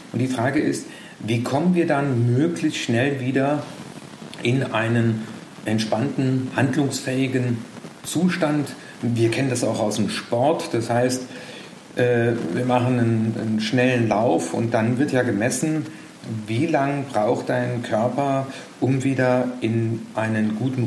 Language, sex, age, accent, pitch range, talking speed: German, male, 50-69, German, 115-140 Hz, 130 wpm